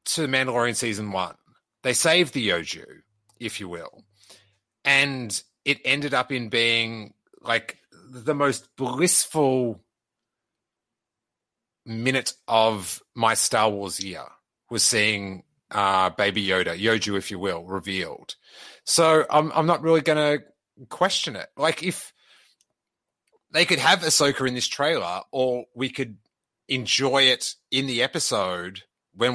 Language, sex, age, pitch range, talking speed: English, male, 30-49, 100-140 Hz, 130 wpm